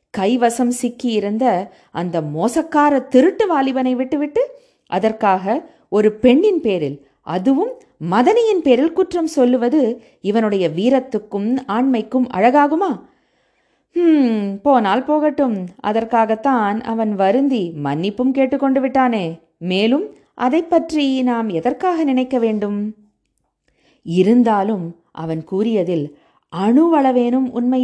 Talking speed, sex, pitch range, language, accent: 90 wpm, female, 200-275 Hz, Tamil, native